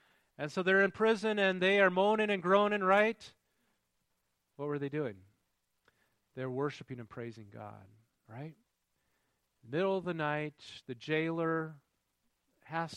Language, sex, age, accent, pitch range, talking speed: English, male, 40-59, American, 125-150 Hz, 135 wpm